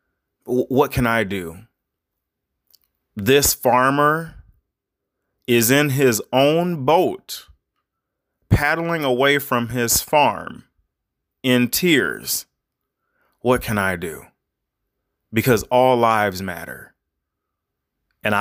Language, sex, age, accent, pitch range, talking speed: English, male, 30-49, American, 95-130 Hz, 90 wpm